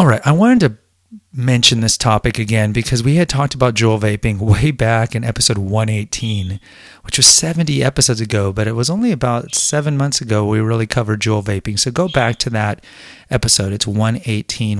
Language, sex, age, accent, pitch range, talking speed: English, male, 30-49, American, 105-125 Hz, 190 wpm